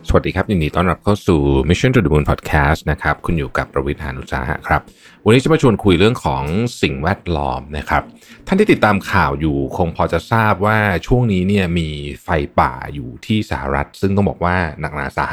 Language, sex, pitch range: Thai, male, 75-100 Hz